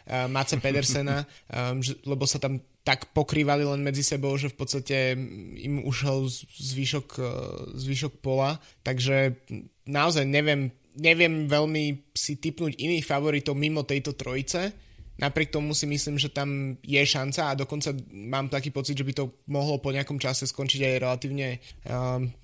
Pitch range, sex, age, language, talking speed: 130-145 Hz, male, 20-39, Slovak, 150 wpm